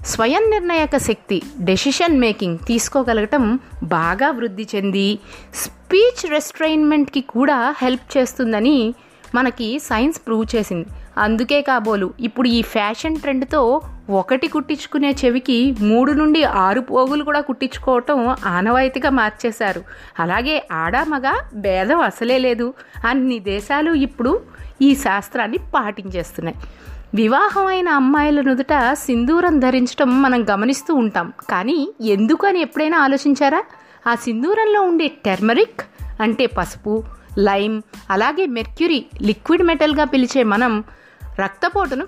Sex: female